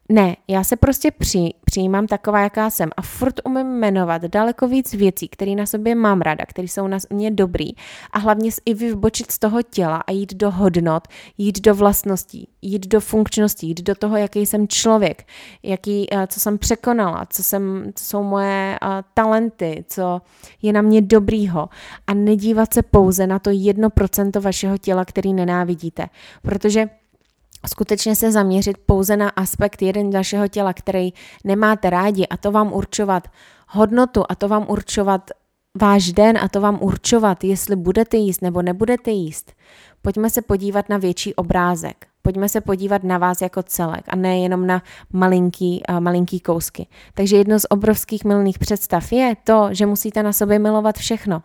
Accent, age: native, 20-39